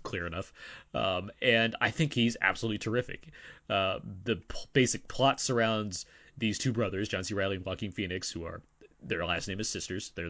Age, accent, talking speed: 30-49, American, 185 wpm